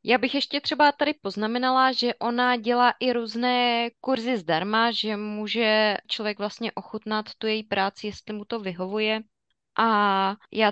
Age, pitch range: 20-39, 205-235 Hz